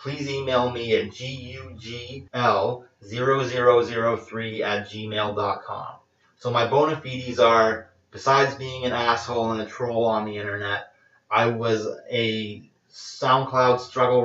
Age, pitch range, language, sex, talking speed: 30-49, 110-125 Hz, English, male, 115 wpm